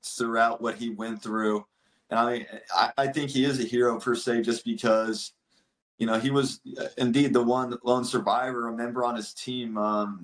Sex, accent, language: male, American, English